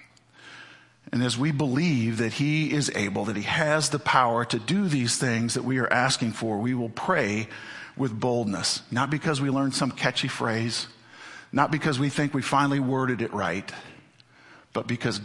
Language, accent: English, American